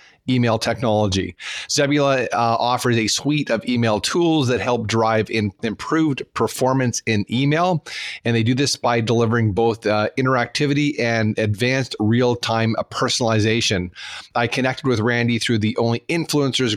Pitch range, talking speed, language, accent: 110-125 Hz, 140 wpm, English, American